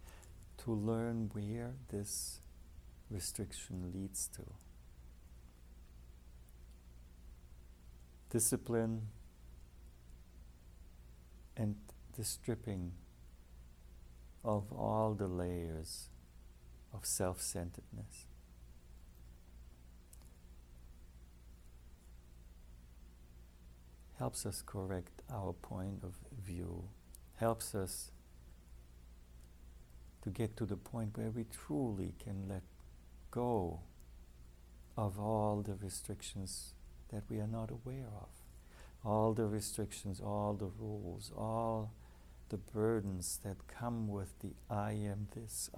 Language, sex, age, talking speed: English, male, 60-79, 85 wpm